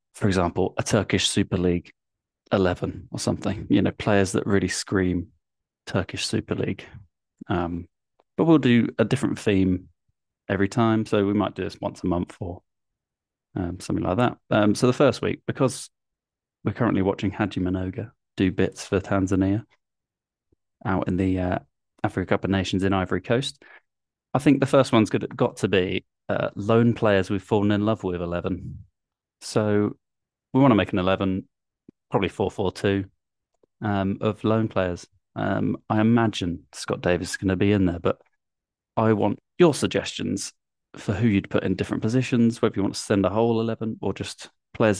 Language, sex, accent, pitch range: English, male, British, 95-110 Hz